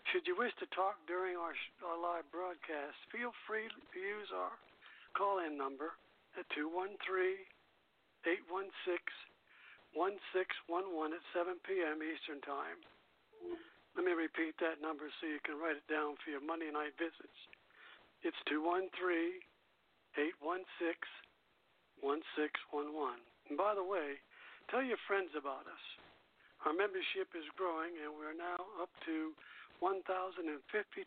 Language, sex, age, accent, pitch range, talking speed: English, male, 60-79, American, 160-240 Hz, 125 wpm